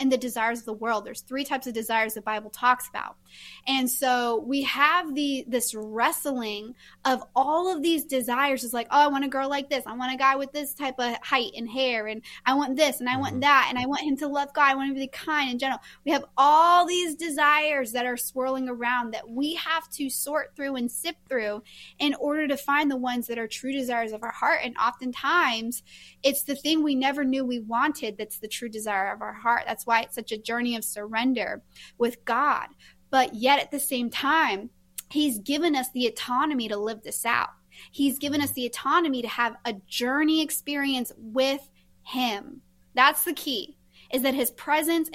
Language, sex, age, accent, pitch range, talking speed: English, female, 20-39, American, 230-280 Hz, 215 wpm